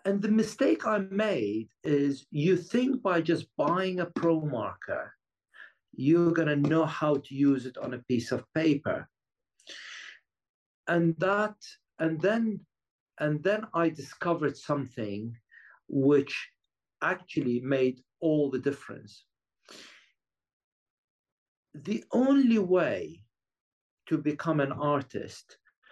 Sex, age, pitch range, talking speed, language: male, 50-69, 140-190 Hz, 110 wpm, English